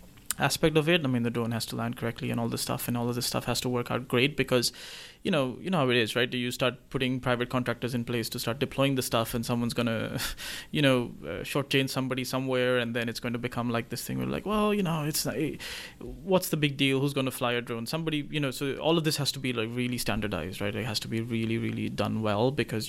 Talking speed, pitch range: 280 wpm, 115-135 Hz